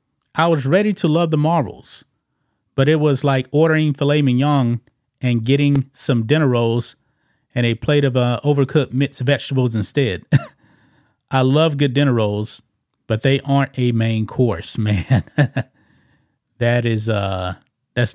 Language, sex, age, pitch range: English, male, 30-49, 115-140 Hz